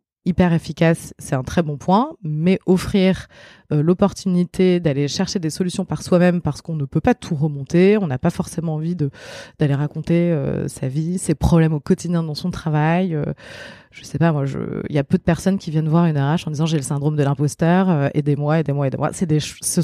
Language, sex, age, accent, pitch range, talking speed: French, female, 20-39, French, 150-185 Hz, 215 wpm